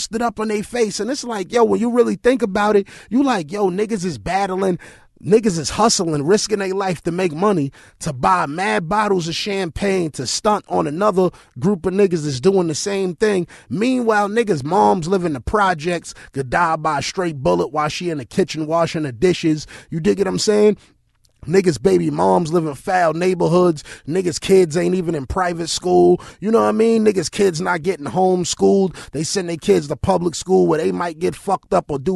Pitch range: 170-215 Hz